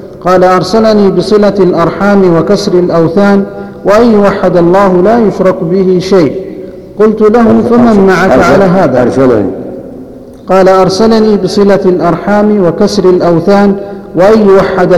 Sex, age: male, 50-69